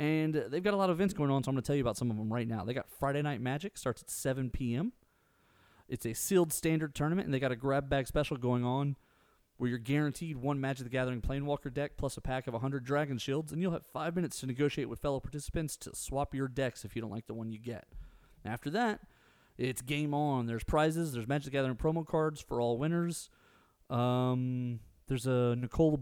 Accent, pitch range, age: American, 125-155 Hz, 30-49